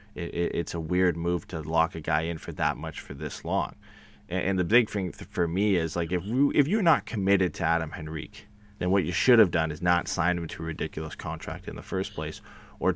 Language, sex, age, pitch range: English, male, 20-39, 85-105 Hz